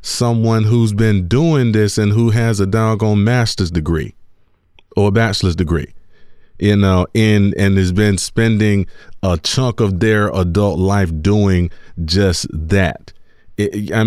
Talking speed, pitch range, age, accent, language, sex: 140 wpm, 100-135 Hz, 40-59, American, English, male